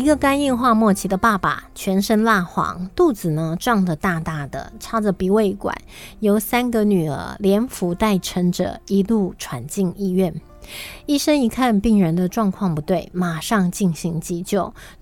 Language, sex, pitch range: Chinese, female, 185-230 Hz